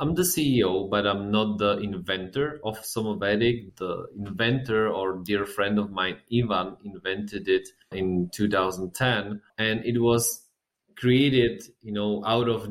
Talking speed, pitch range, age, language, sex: 140 wpm, 95-120 Hz, 20-39, English, male